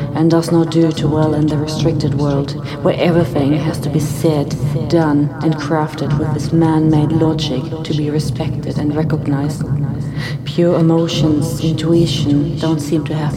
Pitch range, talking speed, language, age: 145-155 Hz, 155 wpm, English, 40-59